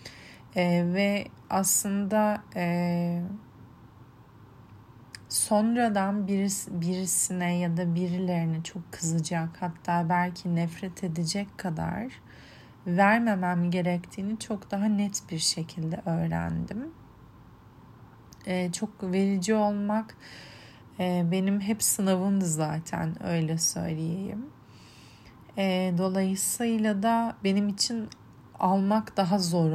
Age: 30-49